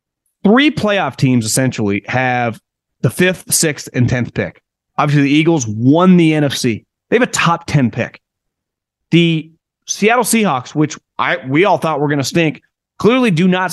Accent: American